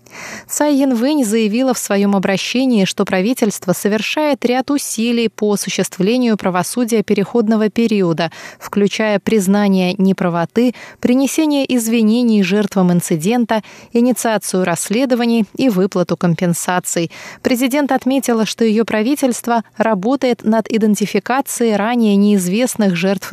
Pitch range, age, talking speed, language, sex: 190-240 Hz, 20-39, 100 wpm, Russian, female